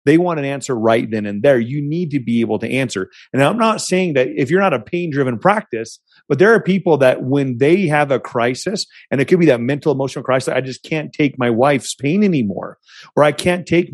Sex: male